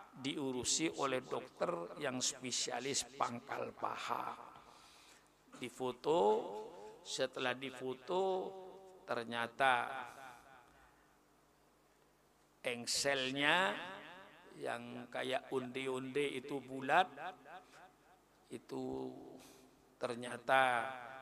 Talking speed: 55 wpm